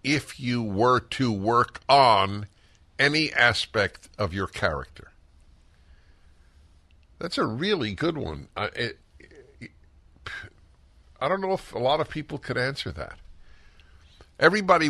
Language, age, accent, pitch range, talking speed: English, 60-79, American, 80-105 Hz, 115 wpm